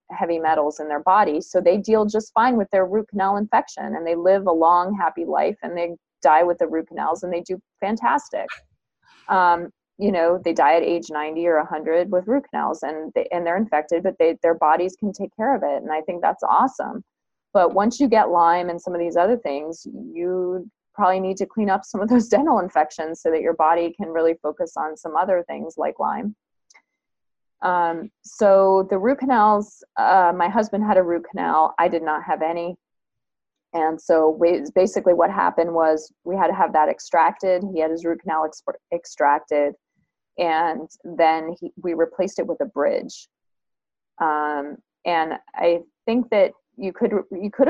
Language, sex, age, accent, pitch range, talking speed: English, female, 20-39, American, 160-205 Hz, 190 wpm